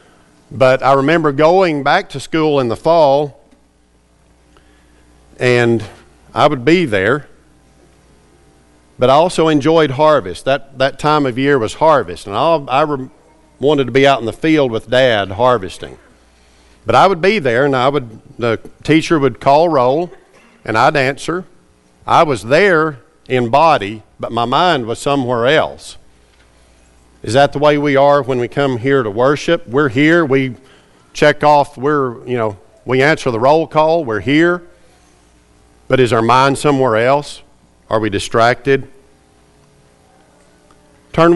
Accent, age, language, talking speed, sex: American, 50-69, English, 150 wpm, male